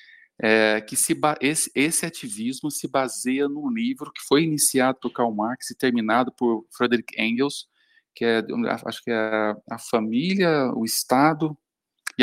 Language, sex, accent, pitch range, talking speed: Portuguese, male, Brazilian, 115-160 Hz, 155 wpm